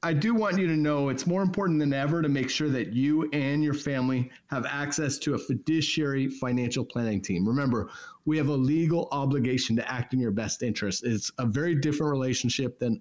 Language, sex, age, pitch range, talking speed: English, male, 30-49, 125-160 Hz, 210 wpm